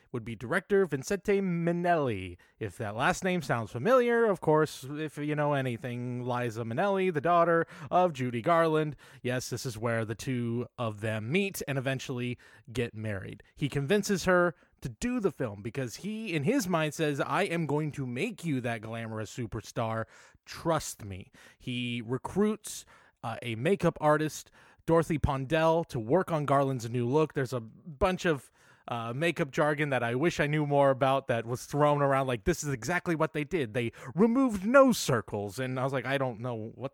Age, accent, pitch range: 20-39, American, 120-165 Hz